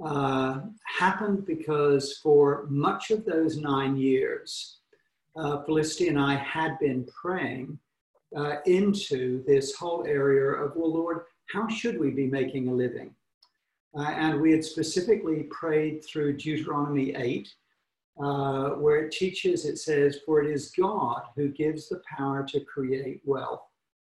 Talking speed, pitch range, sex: 140 wpm, 140-185 Hz, male